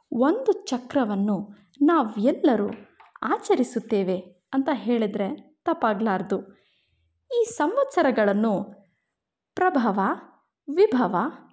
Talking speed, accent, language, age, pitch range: 55 wpm, native, Kannada, 20-39, 210-295 Hz